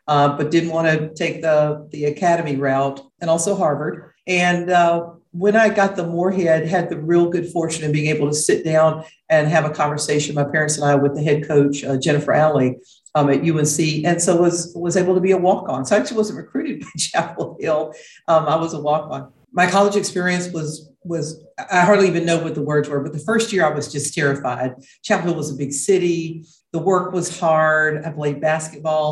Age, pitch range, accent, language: 50-69, 150-175 Hz, American, English